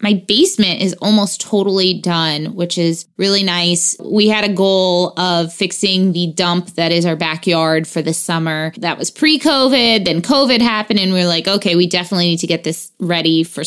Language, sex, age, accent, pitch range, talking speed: English, female, 20-39, American, 175-220 Hz, 195 wpm